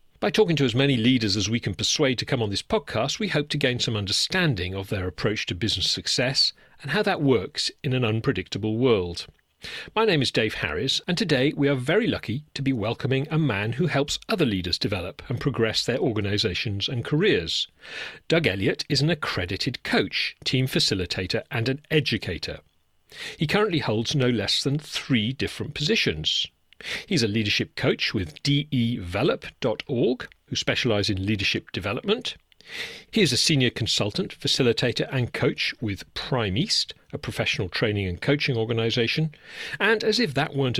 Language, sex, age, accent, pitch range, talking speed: English, male, 40-59, British, 110-150 Hz, 170 wpm